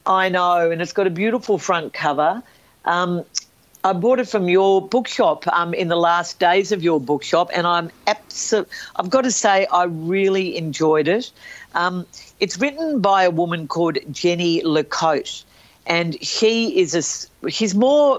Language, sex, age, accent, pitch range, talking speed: English, female, 50-69, Australian, 150-190 Hz, 170 wpm